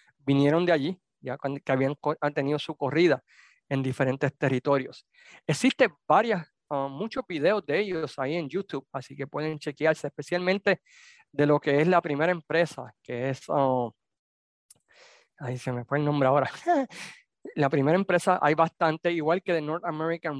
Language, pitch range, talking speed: Spanish, 140-170 Hz, 160 wpm